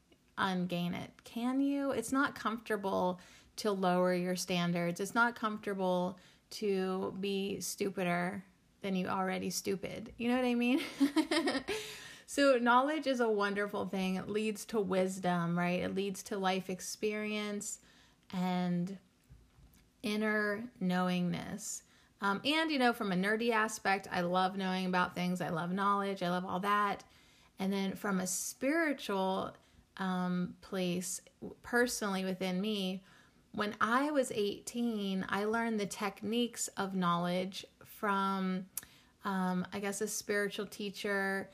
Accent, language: American, English